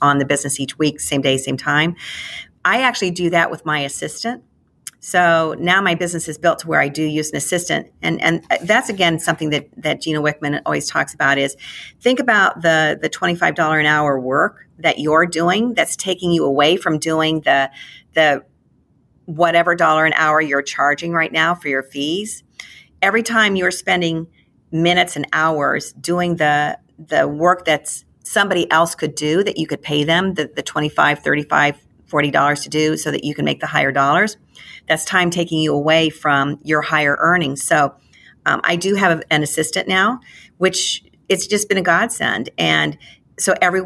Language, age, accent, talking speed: English, 50-69, American, 185 wpm